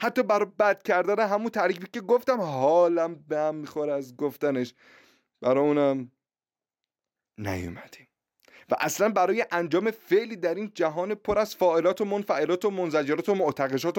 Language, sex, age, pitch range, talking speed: Persian, male, 30-49, 140-210 Hz, 145 wpm